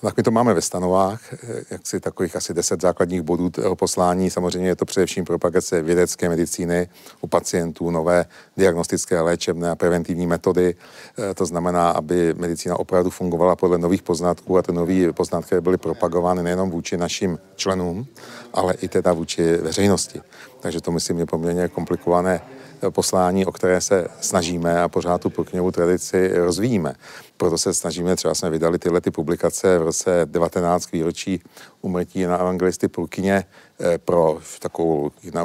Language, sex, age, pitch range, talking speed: Czech, male, 50-69, 85-90 Hz, 150 wpm